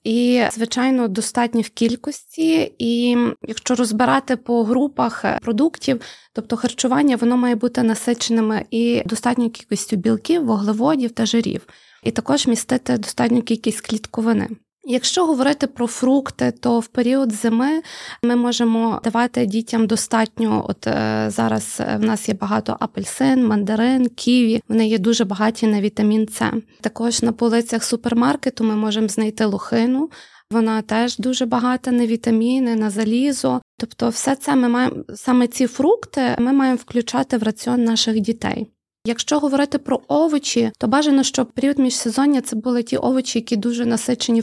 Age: 20-39